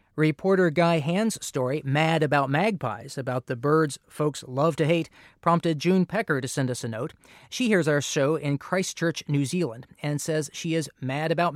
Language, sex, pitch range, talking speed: English, male, 140-180 Hz, 185 wpm